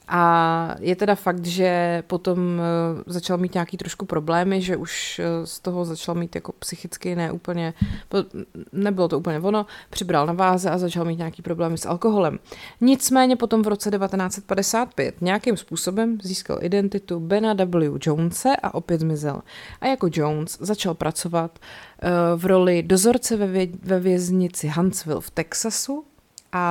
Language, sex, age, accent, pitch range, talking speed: Czech, female, 30-49, native, 170-200 Hz, 145 wpm